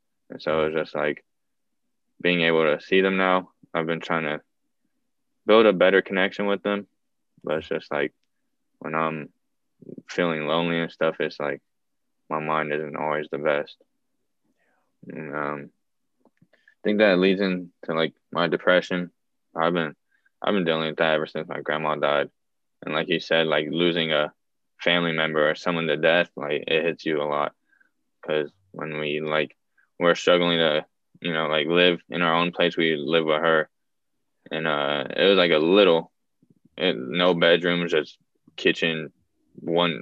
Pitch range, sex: 80-90 Hz, male